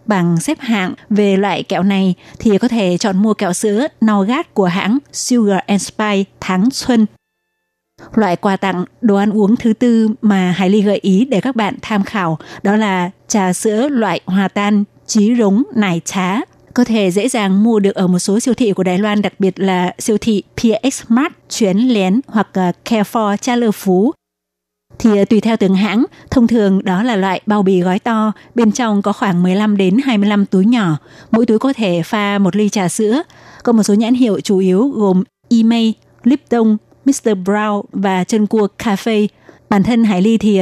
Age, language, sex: 20-39, Vietnamese, female